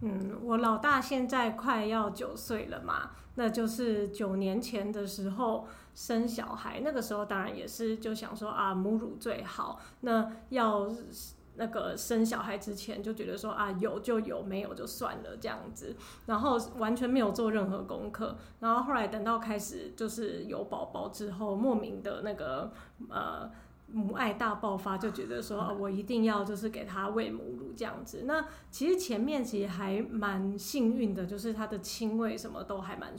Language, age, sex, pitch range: Chinese, 20-39, female, 205-230 Hz